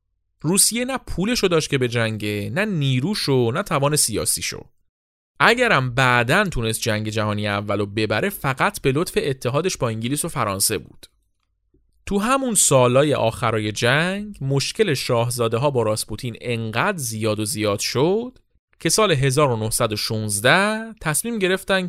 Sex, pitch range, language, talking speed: male, 110-175 Hz, Persian, 140 wpm